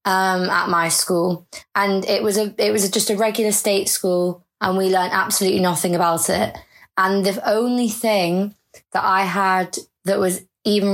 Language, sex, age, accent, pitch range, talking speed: English, female, 20-39, British, 175-195 Hz, 175 wpm